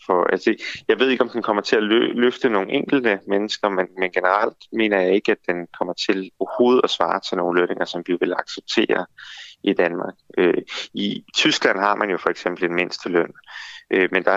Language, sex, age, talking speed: Danish, male, 30-49, 210 wpm